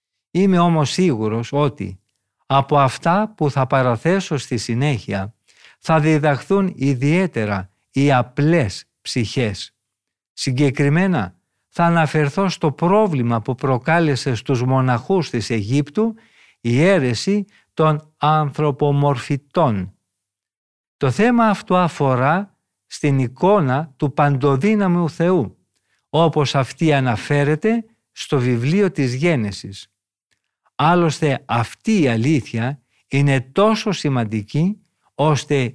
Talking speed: 95 wpm